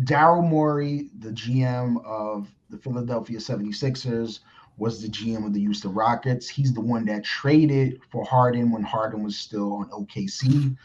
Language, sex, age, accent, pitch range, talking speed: English, male, 30-49, American, 115-145 Hz, 155 wpm